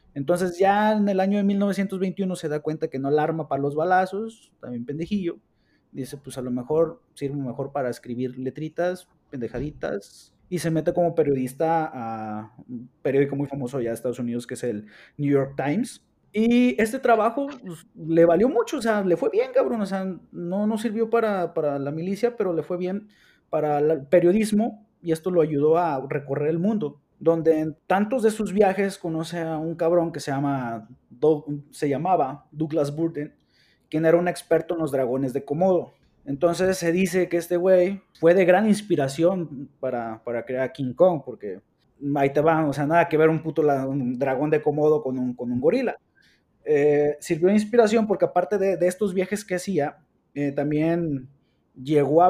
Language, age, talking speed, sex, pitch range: Spanish, 30-49, 190 wpm, male, 140-185 Hz